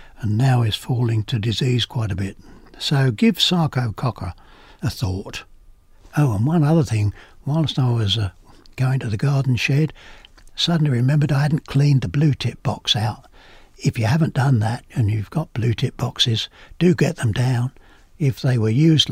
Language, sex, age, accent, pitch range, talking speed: English, male, 60-79, British, 110-140 Hz, 175 wpm